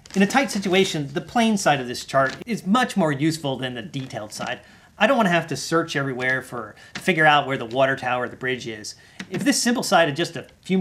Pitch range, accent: 130-195 Hz, American